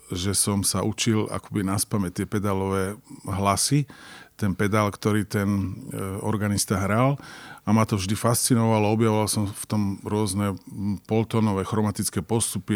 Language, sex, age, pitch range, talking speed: Slovak, male, 40-59, 100-115 Hz, 130 wpm